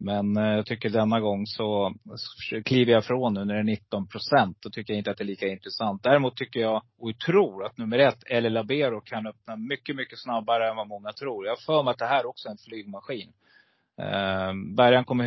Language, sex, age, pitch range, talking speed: Swedish, male, 30-49, 105-125 Hz, 205 wpm